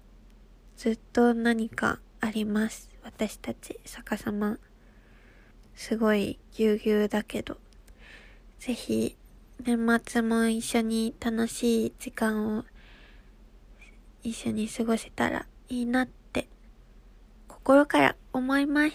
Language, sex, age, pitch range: Japanese, female, 20-39, 215-245 Hz